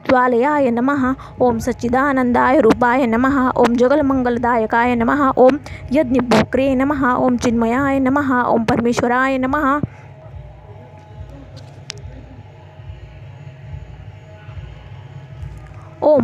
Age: 20-39